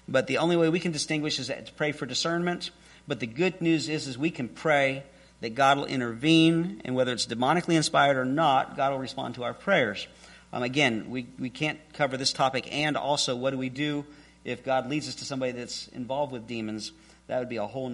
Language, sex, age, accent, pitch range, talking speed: English, male, 50-69, American, 135-200 Hz, 225 wpm